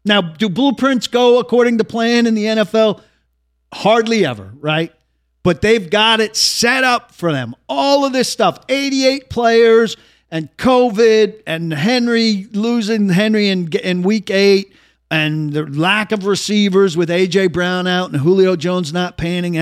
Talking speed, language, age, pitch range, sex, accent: 155 wpm, English, 50-69, 155-210 Hz, male, American